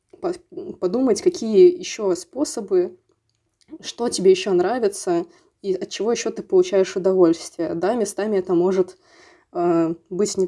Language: Russian